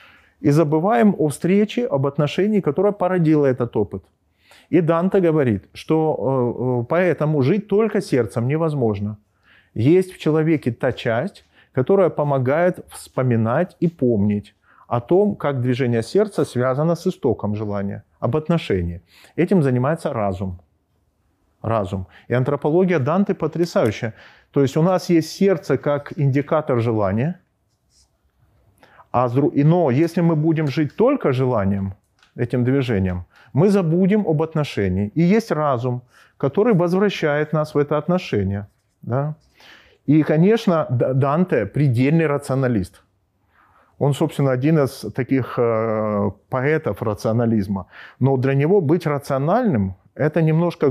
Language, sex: Ukrainian, male